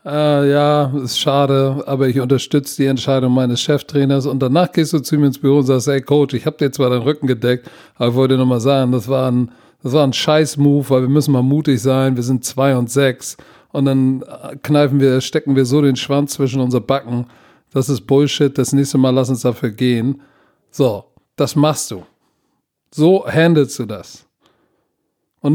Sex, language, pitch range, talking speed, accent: male, German, 135-170 Hz, 200 wpm, German